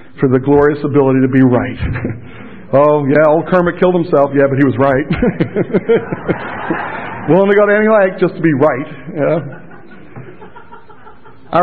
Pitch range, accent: 125-165 Hz, American